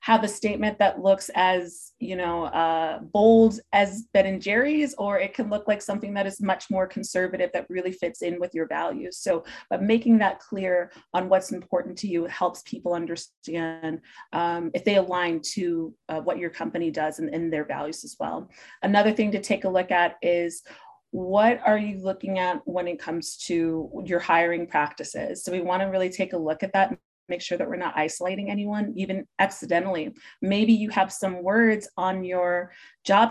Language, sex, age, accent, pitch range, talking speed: English, female, 30-49, American, 170-200 Hz, 195 wpm